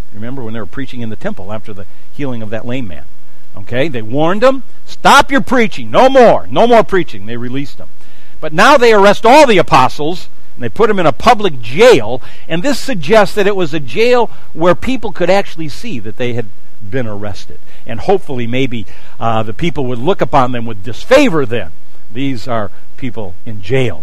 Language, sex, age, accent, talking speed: English, male, 60-79, American, 200 wpm